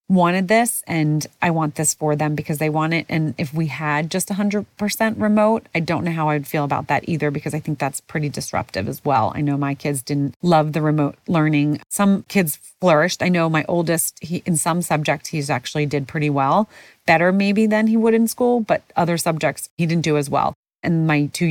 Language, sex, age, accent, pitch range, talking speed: English, female, 30-49, American, 150-195 Hz, 220 wpm